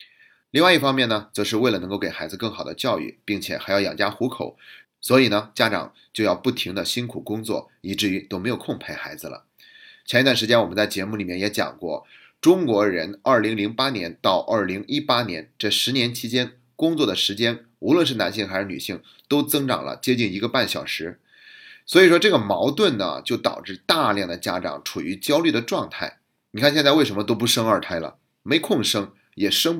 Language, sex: Chinese, male